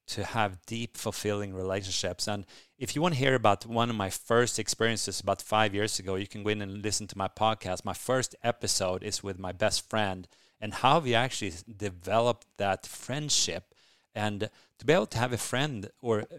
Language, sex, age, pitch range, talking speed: English, male, 30-49, 100-115 Hz, 200 wpm